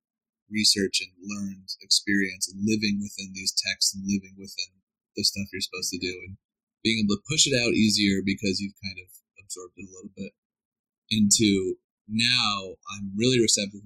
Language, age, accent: English, 20-39, American